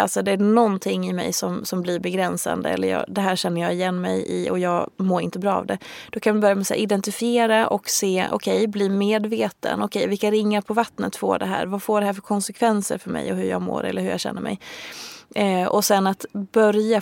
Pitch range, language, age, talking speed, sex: 190-220 Hz, Swedish, 20-39, 245 wpm, female